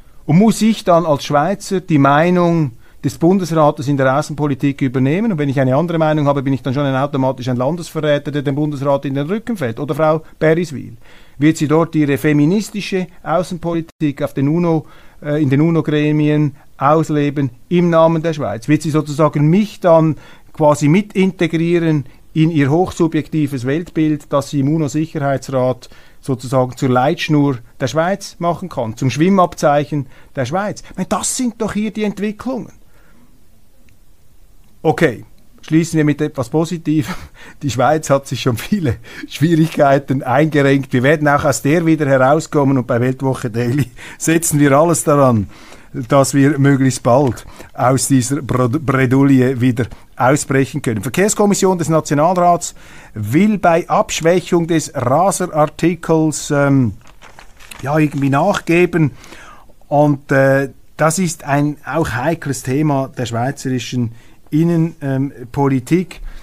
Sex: male